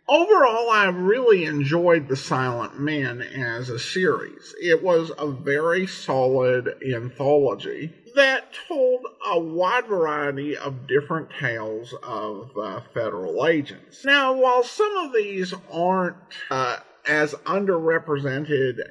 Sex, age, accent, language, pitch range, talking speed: male, 50-69, American, English, 140-205 Hz, 115 wpm